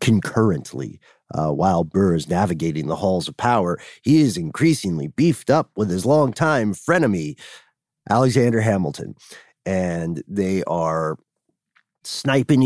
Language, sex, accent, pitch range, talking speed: English, male, American, 90-145 Hz, 120 wpm